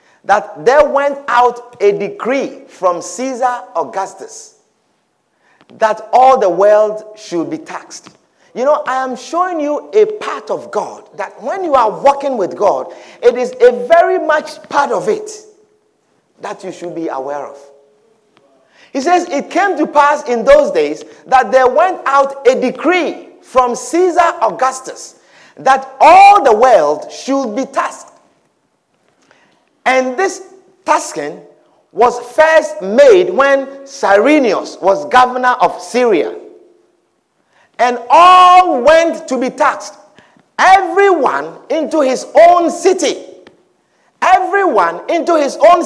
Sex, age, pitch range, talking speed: male, 50-69, 240-350 Hz, 130 wpm